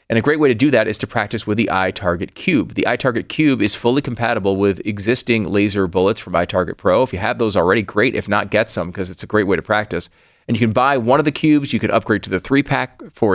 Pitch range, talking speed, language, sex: 95-130 Hz, 265 wpm, English, male